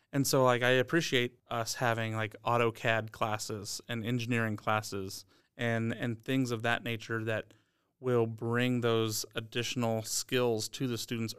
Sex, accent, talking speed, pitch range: male, American, 150 wpm, 115-125 Hz